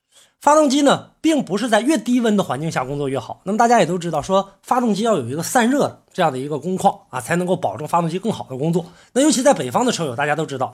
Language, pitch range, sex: Chinese, 150-220 Hz, male